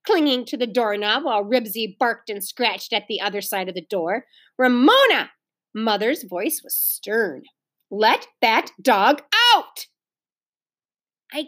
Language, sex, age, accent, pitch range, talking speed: English, female, 40-59, American, 215-320 Hz, 135 wpm